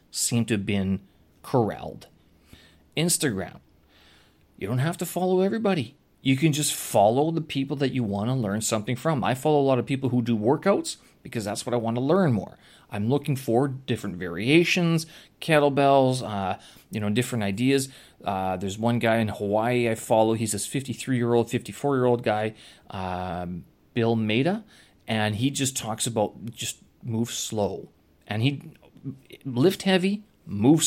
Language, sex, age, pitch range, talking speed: English, male, 30-49, 110-150 Hz, 165 wpm